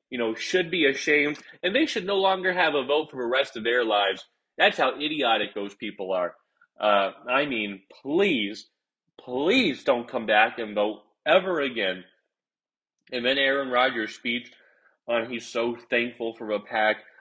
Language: English